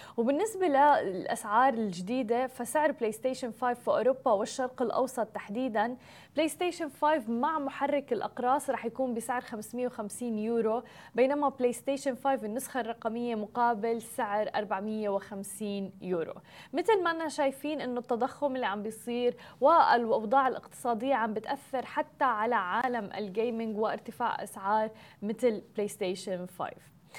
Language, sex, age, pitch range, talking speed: Arabic, female, 20-39, 225-275 Hz, 125 wpm